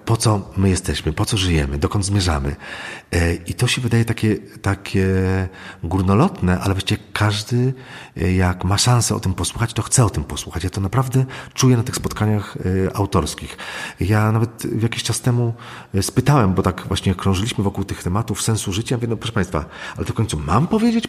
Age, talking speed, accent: 40-59, 170 wpm, native